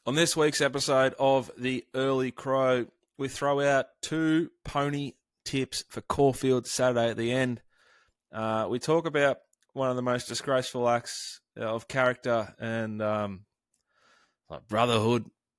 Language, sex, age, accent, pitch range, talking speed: English, male, 20-39, Australian, 105-125 Hz, 140 wpm